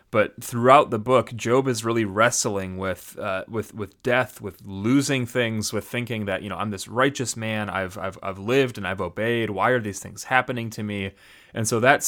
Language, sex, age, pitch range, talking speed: English, male, 30-49, 105-125 Hz, 210 wpm